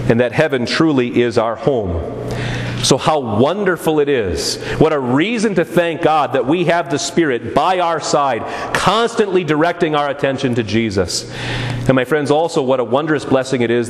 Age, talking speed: 40-59, 180 wpm